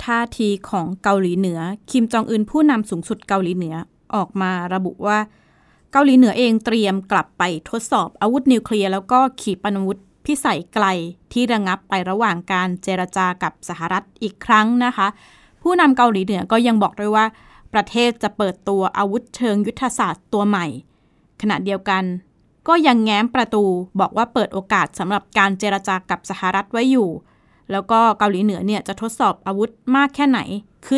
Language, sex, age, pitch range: Thai, female, 20-39, 190-235 Hz